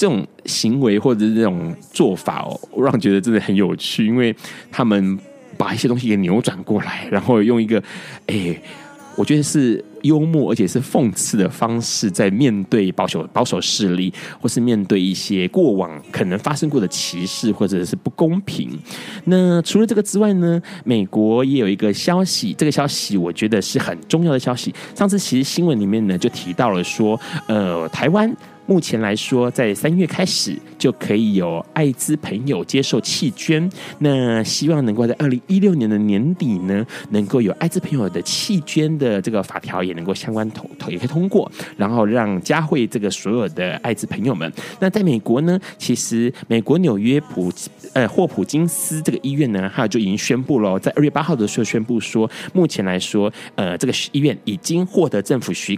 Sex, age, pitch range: male, 20-39, 105-160 Hz